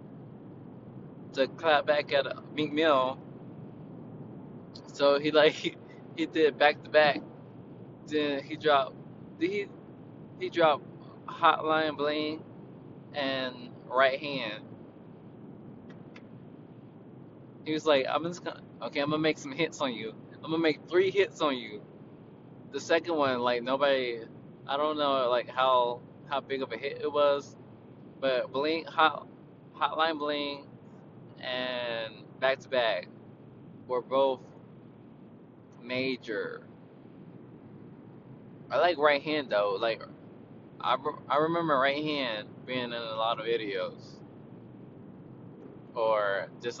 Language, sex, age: English, male, 20-39